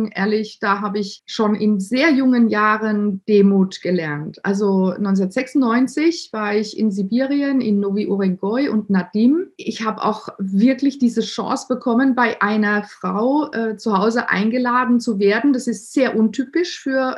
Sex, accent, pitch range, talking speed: female, German, 205-240 Hz, 145 wpm